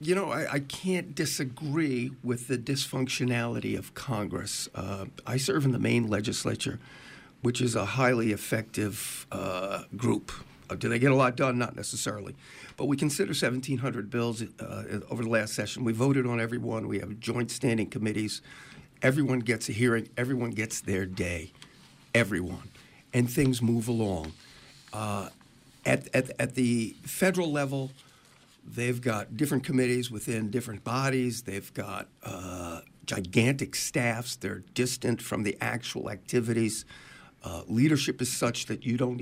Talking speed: 150 wpm